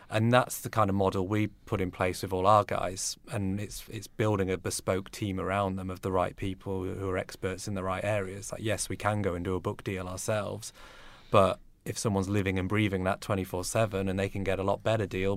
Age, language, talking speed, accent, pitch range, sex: 30-49, English, 240 wpm, British, 95-105 Hz, male